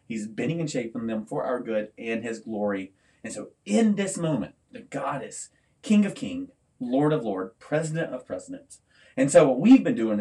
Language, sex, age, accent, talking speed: English, male, 30-49, American, 195 wpm